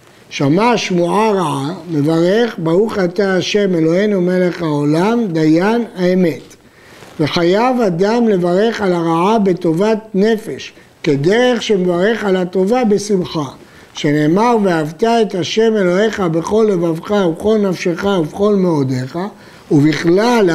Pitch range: 170-220 Hz